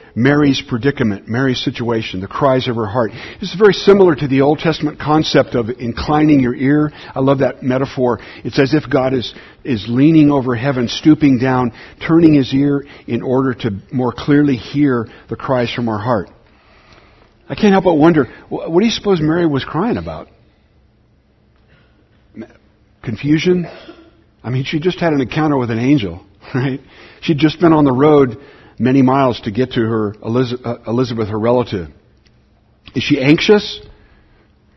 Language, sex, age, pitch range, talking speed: English, male, 50-69, 120-155 Hz, 160 wpm